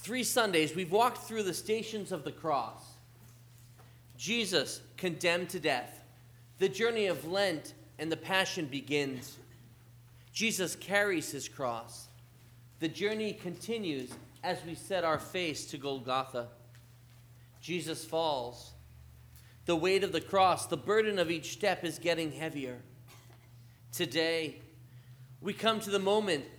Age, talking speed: 40-59, 130 wpm